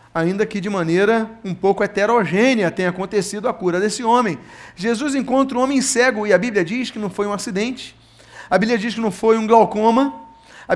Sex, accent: male, Brazilian